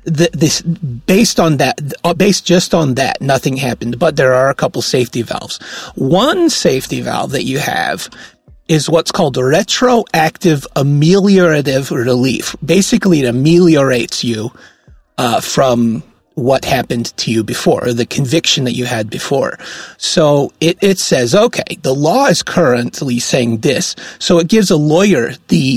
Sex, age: male, 30-49